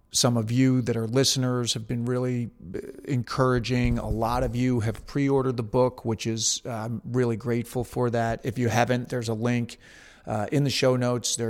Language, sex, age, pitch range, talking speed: English, male, 40-59, 115-130 Hz, 190 wpm